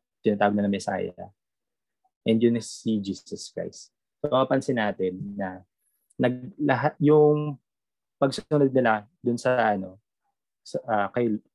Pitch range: 100-135 Hz